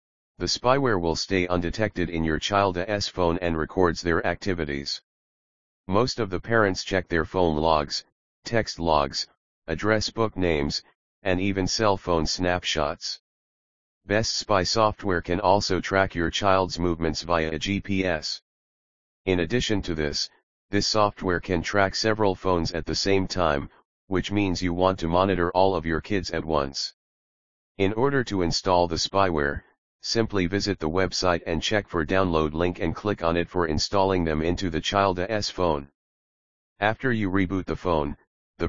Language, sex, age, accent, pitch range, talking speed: English, male, 40-59, American, 80-100 Hz, 155 wpm